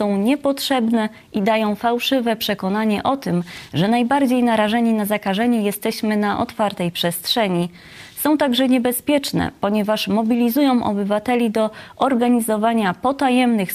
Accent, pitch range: native, 205-245 Hz